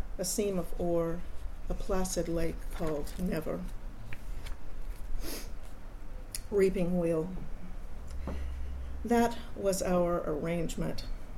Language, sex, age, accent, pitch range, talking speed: English, female, 50-69, American, 170-205 Hz, 80 wpm